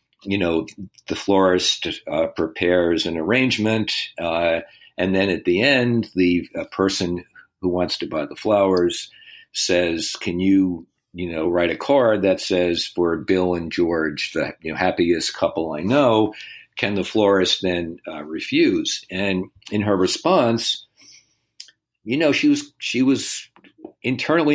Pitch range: 90-120 Hz